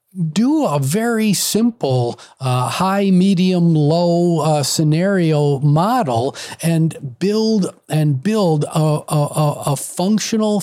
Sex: male